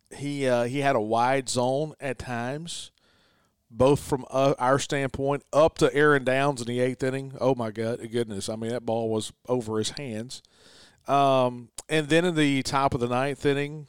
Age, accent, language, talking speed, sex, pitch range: 40-59, American, English, 190 wpm, male, 120-140 Hz